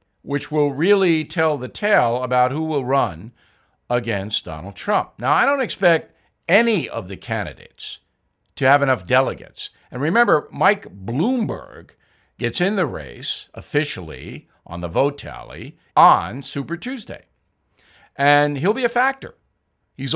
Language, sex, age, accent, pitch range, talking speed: English, male, 60-79, American, 135-180 Hz, 140 wpm